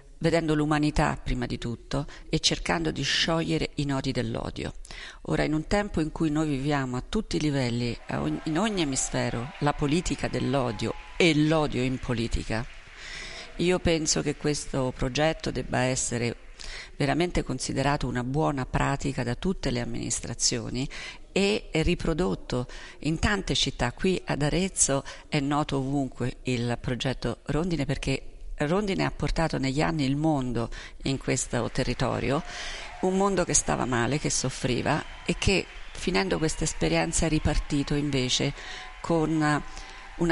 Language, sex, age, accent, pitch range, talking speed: Italian, female, 50-69, native, 130-160 Hz, 135 wpm